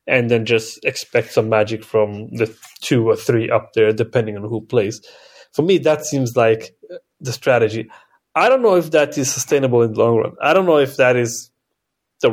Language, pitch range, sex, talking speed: English, 115-165 Hz, male, 205 wpm